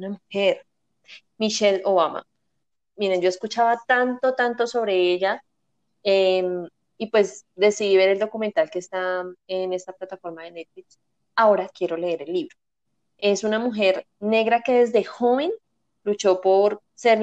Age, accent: 20-39, Colombian